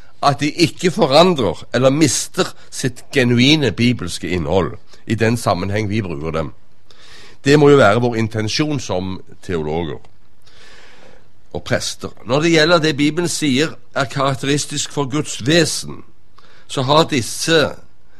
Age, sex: 60-79, male